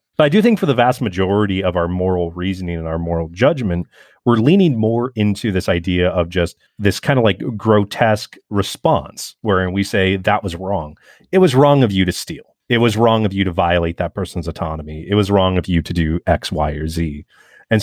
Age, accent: 30-49, American